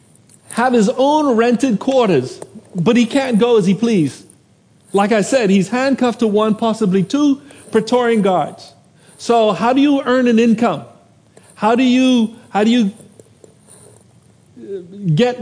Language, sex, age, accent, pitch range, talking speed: English, male, 40-59, American, 200-255 Hz, 135 wpm